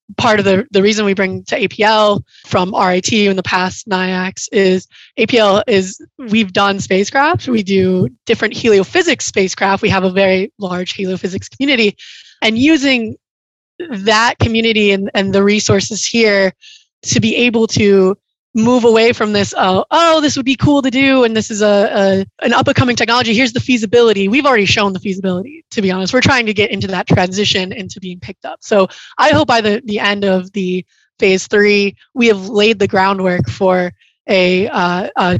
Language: English